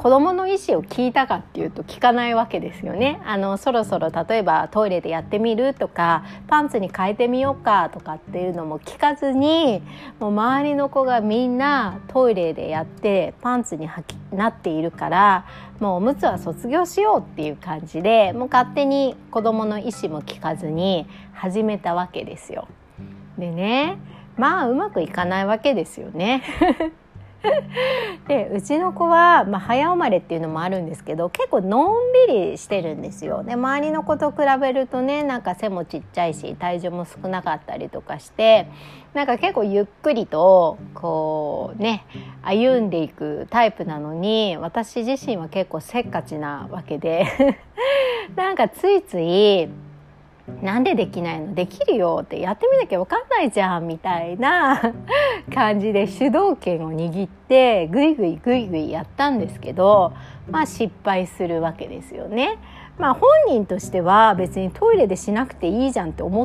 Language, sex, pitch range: Japanese, female, 175-270 Hz